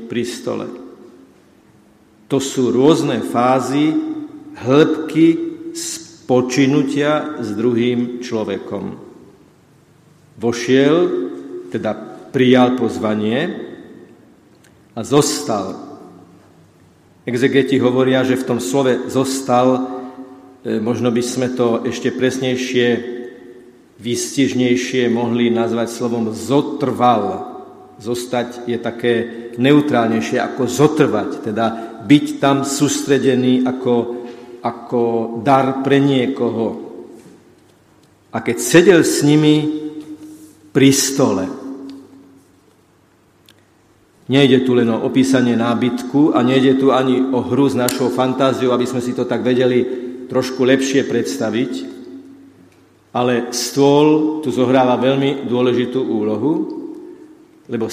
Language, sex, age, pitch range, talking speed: Slovak, male, 50-69, 120-140 Hz, 90 wpm